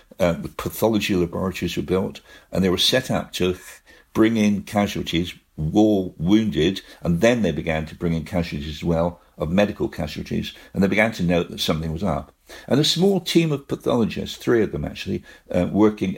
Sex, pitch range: male, 85-115 Hz